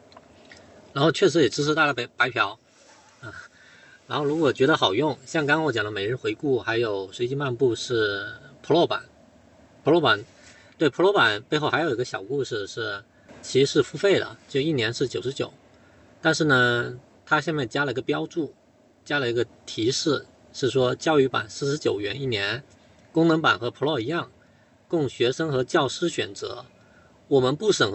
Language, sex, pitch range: Chinese, male, 115-160 Hz